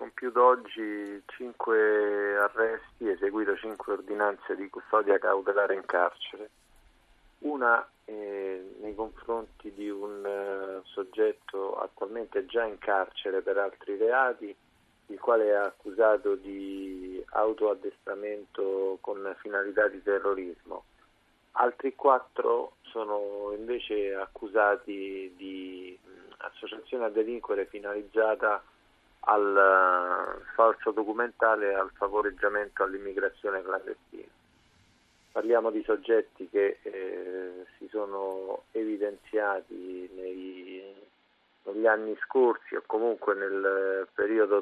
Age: 40-59